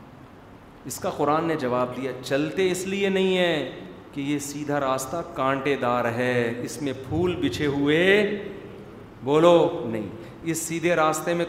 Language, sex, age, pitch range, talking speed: Urdu, male, 40-59, 135-175 Hz, 150 wpm